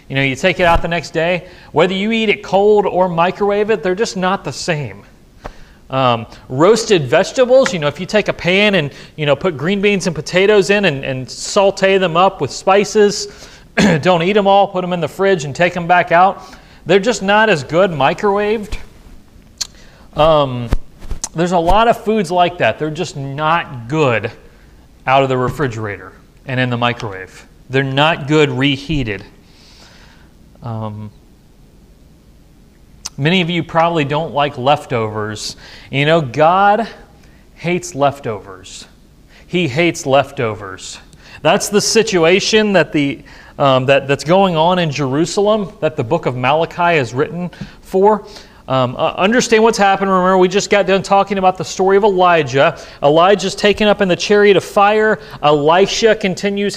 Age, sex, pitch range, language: 30-49, male, 140-195 Hz, English